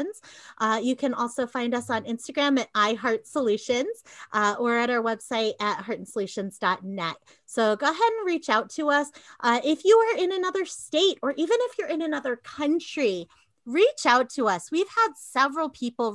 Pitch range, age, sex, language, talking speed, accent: 220-305 Hz, 30-49, female, English, 170 wpm, American